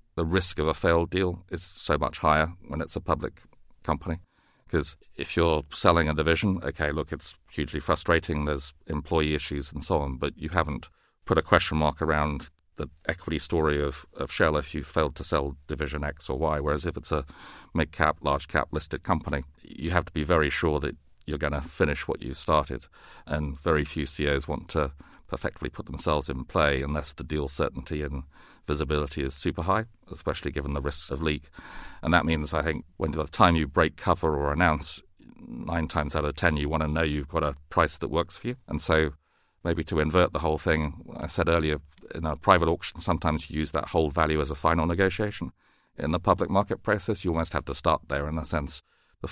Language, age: English, 40-59